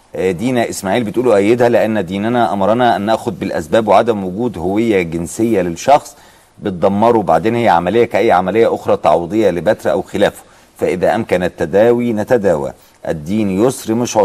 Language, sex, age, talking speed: Arabic, male, 50-69, 140 wpm